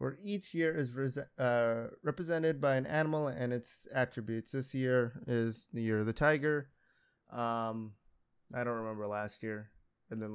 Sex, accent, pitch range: male, American, 115-145 Hz